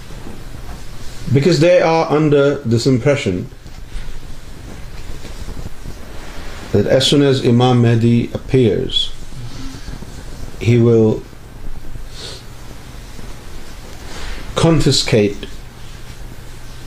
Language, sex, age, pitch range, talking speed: Urdu, male, 50-69, 100-125 Hz, 55 wpm